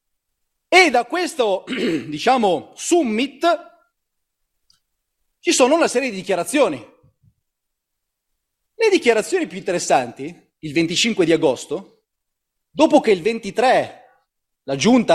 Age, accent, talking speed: 30-49, native, 100 wpm